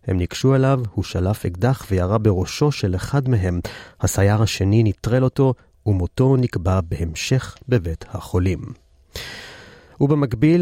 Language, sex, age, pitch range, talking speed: Hebrew, male, 30-49, 100-130 Hz, 120 wpm